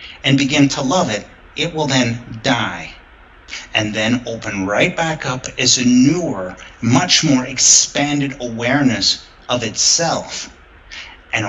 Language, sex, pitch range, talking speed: English, male, 115-140 Hz, 130 wpm